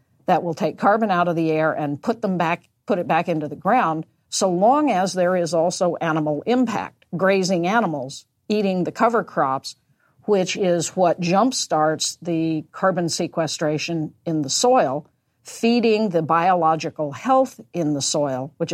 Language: English